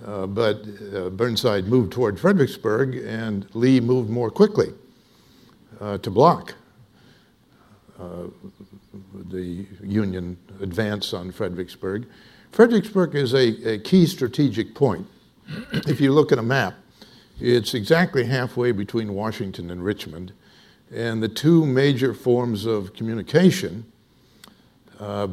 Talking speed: 115 wpm